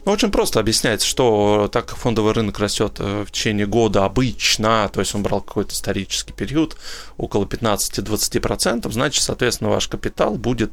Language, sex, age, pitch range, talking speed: Russian, male, 20-39, 105-125 Hz, 150 wpm